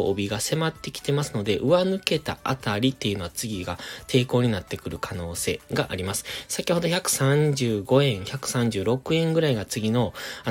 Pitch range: 100-145 Hz